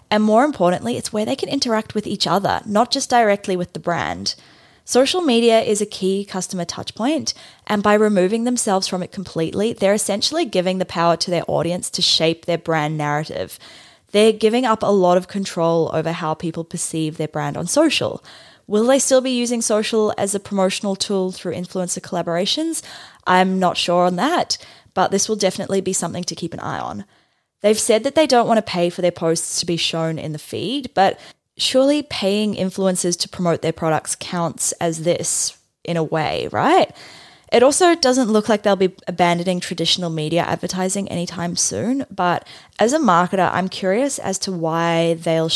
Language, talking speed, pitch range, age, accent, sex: English, 190 wpm, 165-210 Hz, 20-39, Australian, female